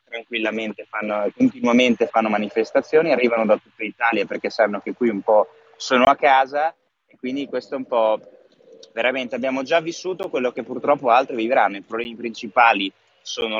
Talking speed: 165 wpm